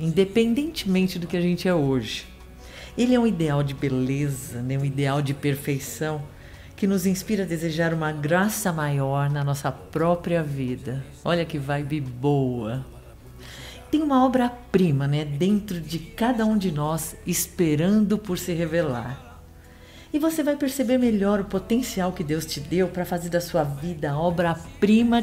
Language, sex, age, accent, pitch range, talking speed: Portuguese, female, 50-69, Brazilian, 135-195 Hz, 155 wpm